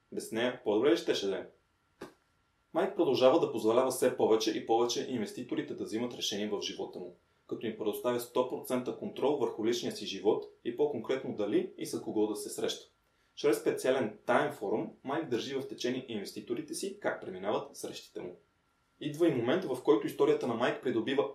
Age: 20-39